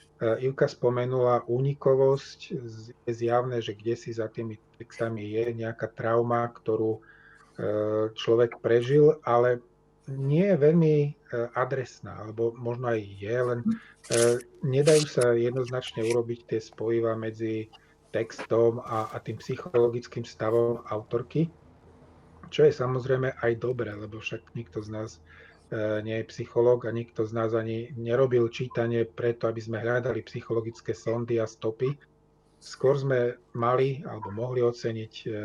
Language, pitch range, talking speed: Slovak, 110-125 Hz, 125 wpm